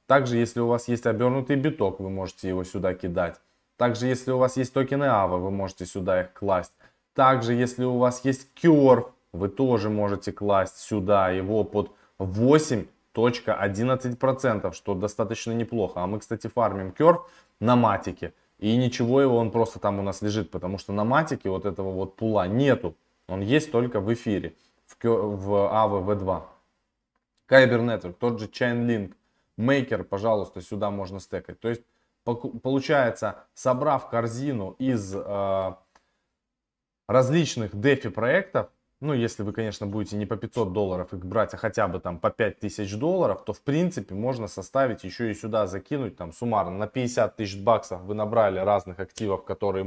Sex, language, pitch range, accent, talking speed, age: male, Russian, 100-125 Hz, native, 160 wpm, 20-39